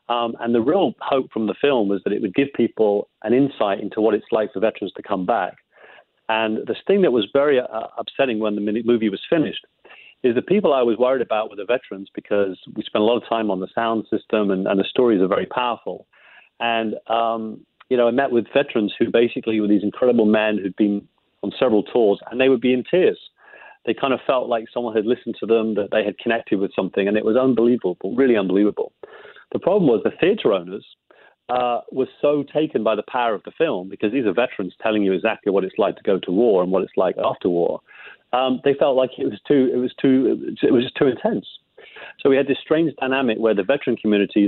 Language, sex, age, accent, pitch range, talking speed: English, male, 40-59, British, 105-130 Hz, 235 wpm